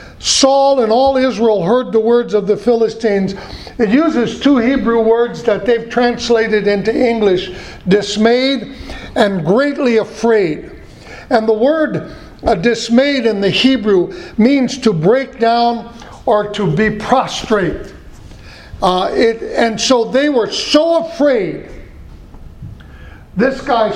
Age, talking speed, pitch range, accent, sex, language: 60-79, 125 wpm, 200-250 Hz, American, male, English